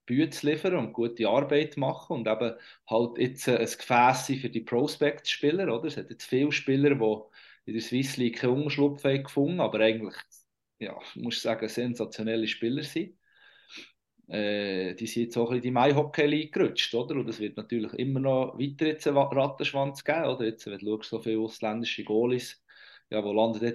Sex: male